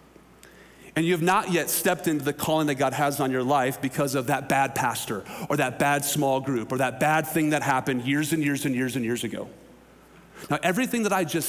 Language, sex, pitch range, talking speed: English, male, 135-180 Hz, 230 wpm